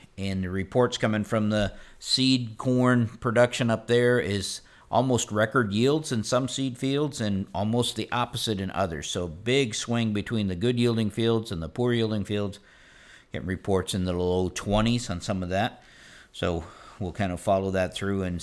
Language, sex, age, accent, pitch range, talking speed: English, male, 50-69, American, 95-120 Hz, 180 wpm